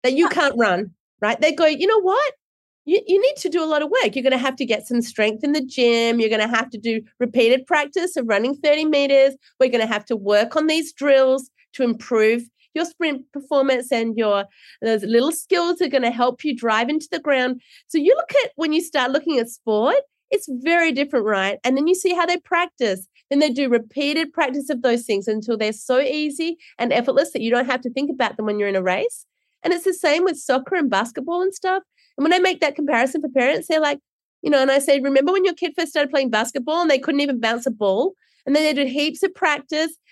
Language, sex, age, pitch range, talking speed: English, female, 30-49, 245-330 Hz, 245 wpm